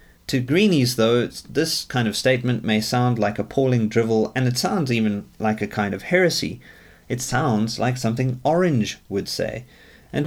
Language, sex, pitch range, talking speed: English, male, 105-140 Hz, 170 wpm